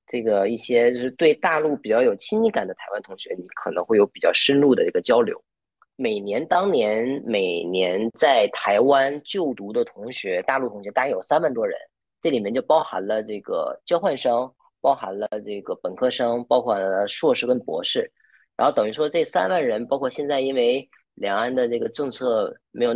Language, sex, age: Chinese, female, 20-39